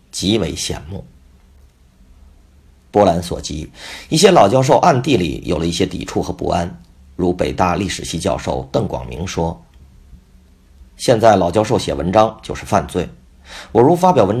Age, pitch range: 50-69, 65-95 Hz